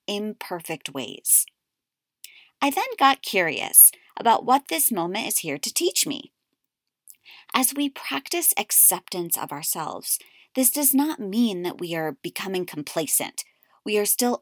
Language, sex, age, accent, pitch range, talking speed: English, female, 30-49, American, 180-255 Hz, 135 wpm